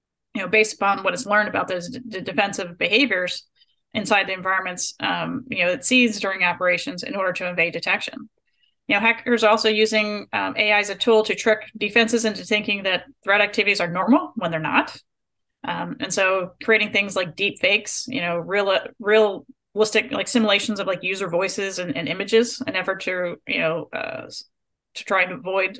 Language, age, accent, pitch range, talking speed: English, 30-49, American, 190-230 Hz, 195 wpm